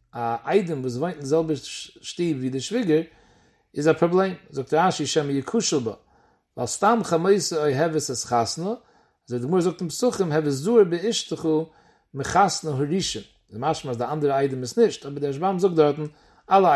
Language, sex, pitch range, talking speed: English, male, 140-185 Hz, 135 wpm